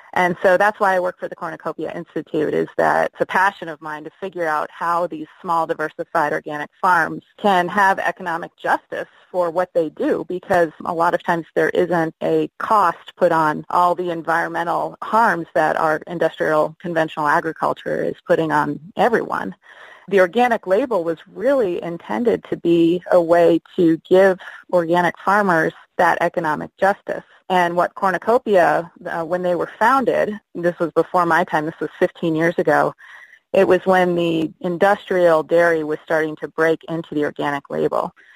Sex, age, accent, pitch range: female, 30-49, American, 160-185 Hz